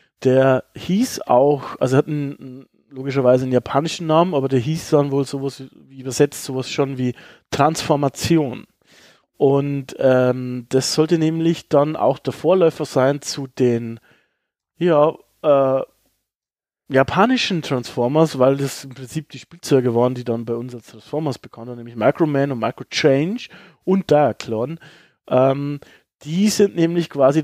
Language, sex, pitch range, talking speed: German, male, 125-150 Hz, 145 wpm